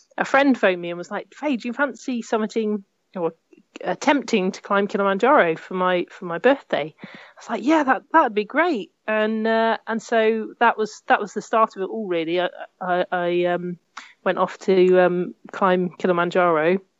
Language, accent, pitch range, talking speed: English, British, 190-235 Hz, 190 wpm